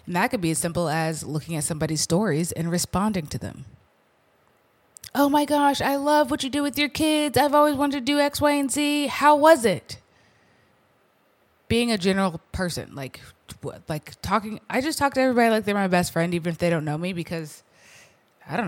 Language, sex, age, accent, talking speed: English, female, 20-39, American, 205 wpm